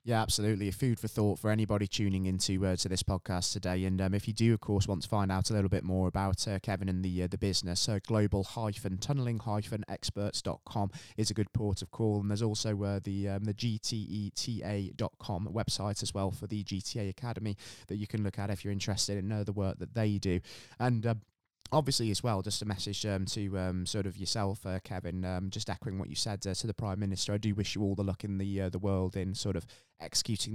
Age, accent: 20-39, British